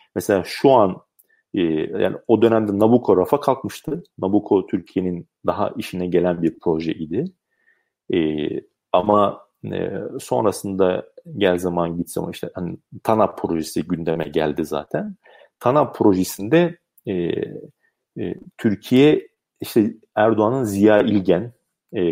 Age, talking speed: 40-59, 115 wpm